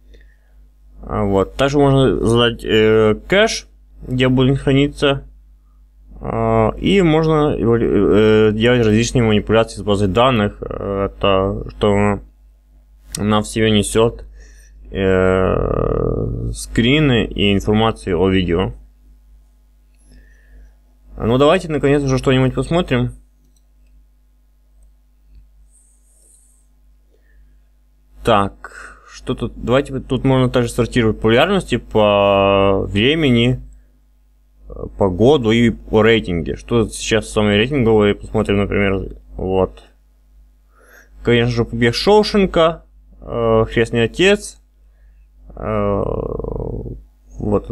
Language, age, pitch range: Russian, 20-39, 80-120 Hz